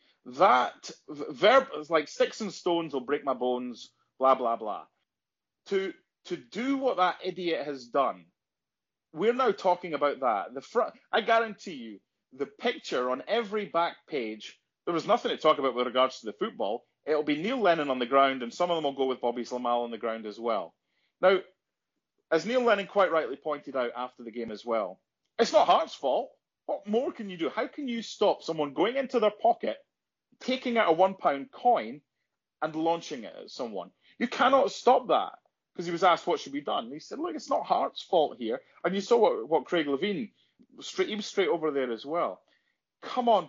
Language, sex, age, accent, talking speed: English, male, 30-49, British, 205 wpm